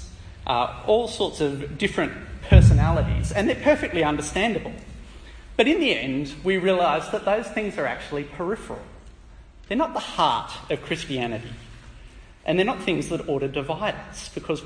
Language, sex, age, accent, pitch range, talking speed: English, male, 30-49, Australian, 110-170 Hz, 155 wpm